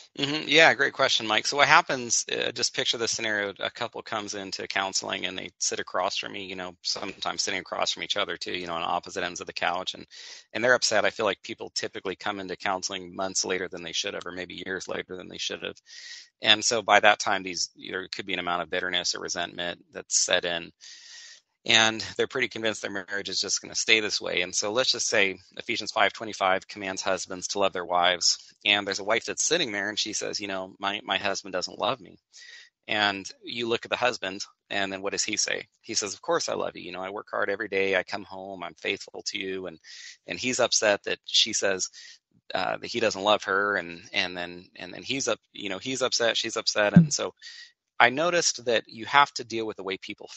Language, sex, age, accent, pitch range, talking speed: English, male, 30-49, American, 95-125 Hz, 240 wpm